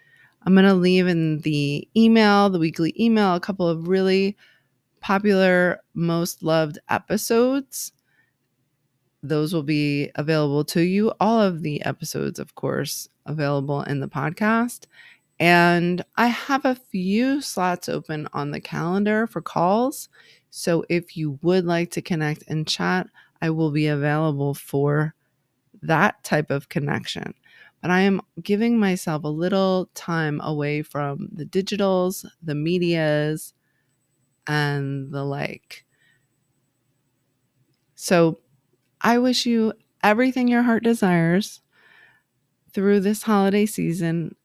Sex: female